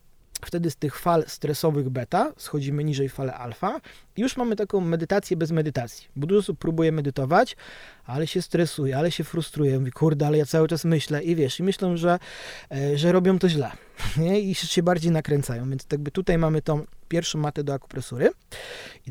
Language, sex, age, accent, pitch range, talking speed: Polish, male, 30-49, native, 140-175 Hz, 180 wpm